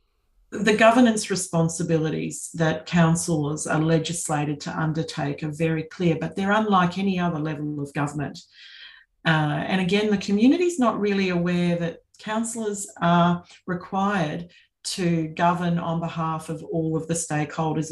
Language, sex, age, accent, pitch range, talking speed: English, female, 40-59, Australian, 155-180 Hz, 135 wpm